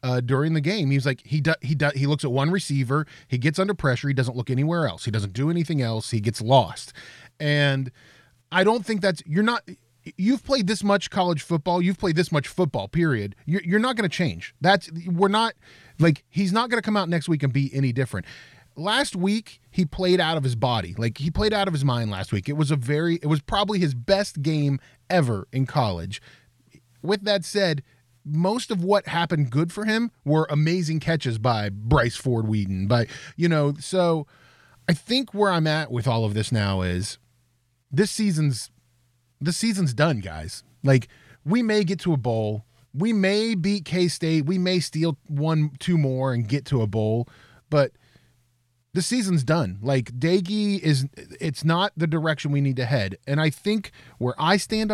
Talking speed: 200 wpm